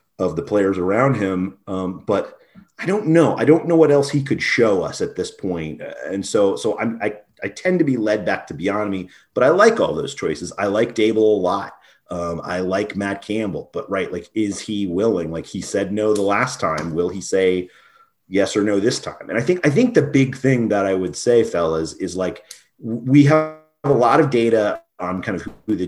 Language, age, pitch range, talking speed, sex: English, 30-49, 90-135 Hz, 225 wpm, male